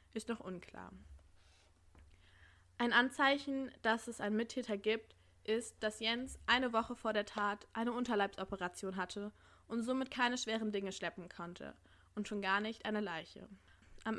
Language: German